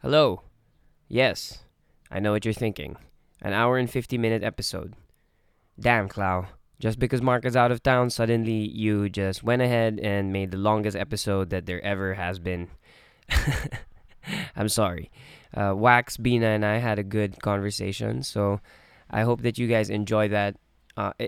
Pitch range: 100-130 Hz